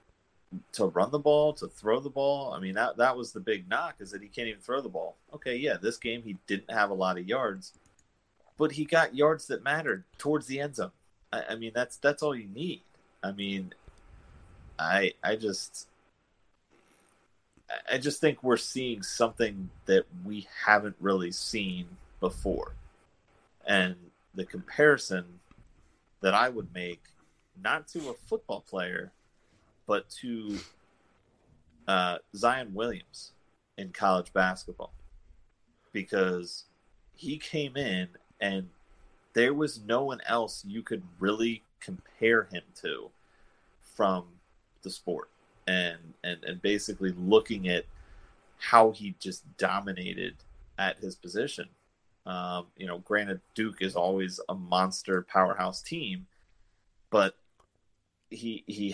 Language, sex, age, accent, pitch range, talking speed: English, male, 30-49, American, 95-120 Hz, 140 wpm